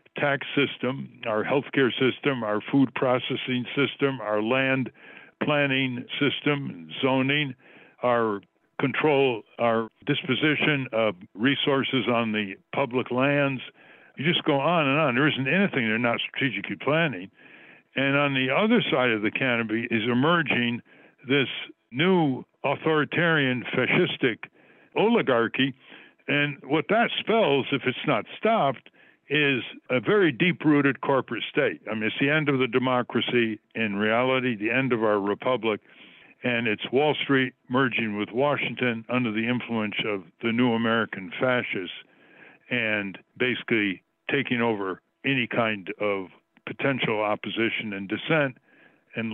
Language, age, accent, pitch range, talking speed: English, 60-79, American, 110-140 Hz, 130 wpm